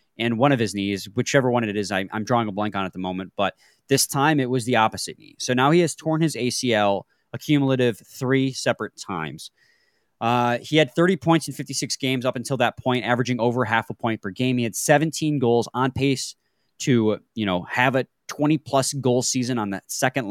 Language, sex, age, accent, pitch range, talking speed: English, male, 20-39, American, 110-140 Hz, 215 wpm